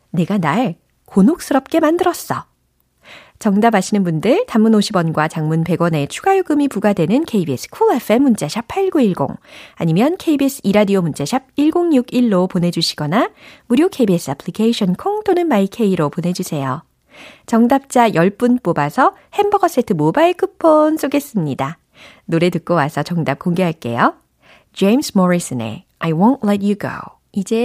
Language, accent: Korean, native